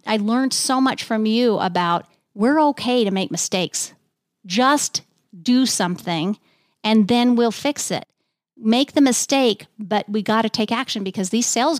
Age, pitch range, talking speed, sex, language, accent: 40-59, 190-250 Hz, 165 wpm, female, English, American